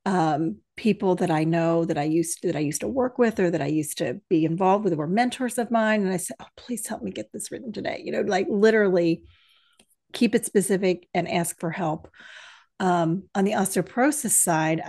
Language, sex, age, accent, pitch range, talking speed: English, female, 40-59, American, 160-200 Hz, 220 wpm